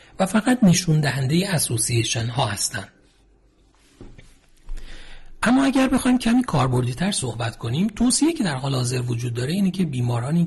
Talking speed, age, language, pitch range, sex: 140 wpm, 40-59, Persian, 120-180 Hz, male